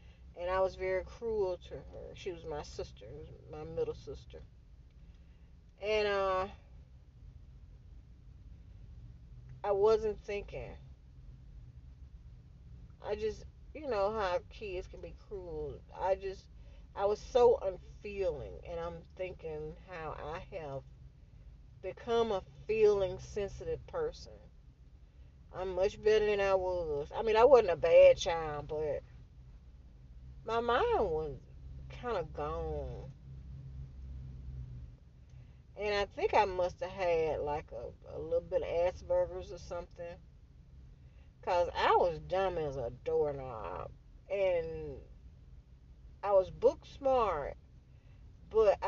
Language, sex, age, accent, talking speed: English, female, 40-59, American, 115 wpm